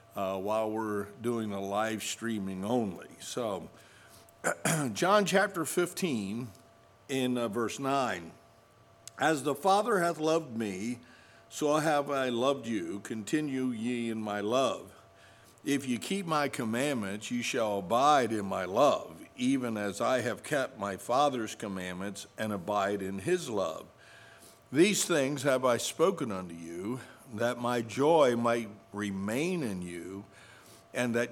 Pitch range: 105-135 Hz